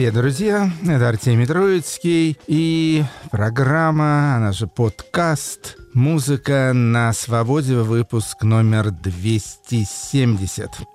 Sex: male